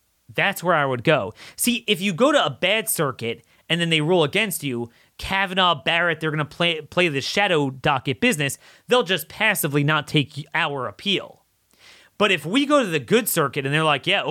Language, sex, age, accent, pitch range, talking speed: English, male, 30-49, American, 115-160 Hz, 205 wpm